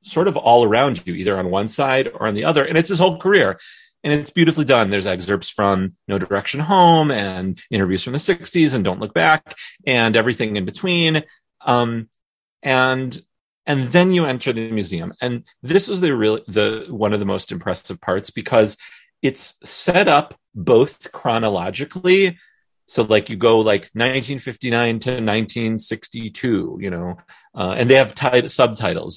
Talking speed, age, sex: 170 wpm, 30-49, male